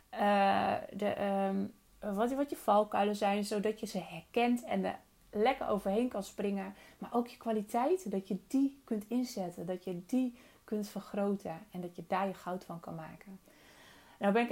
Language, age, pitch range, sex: Dutch, 30-49, 185-210 Hz, female